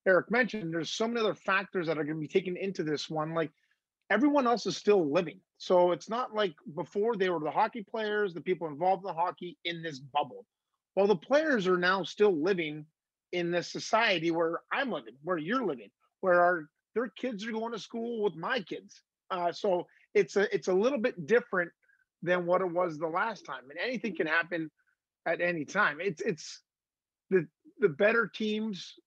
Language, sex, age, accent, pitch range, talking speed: English, male, 30-49, American, 160-205 Hz, 200 wpm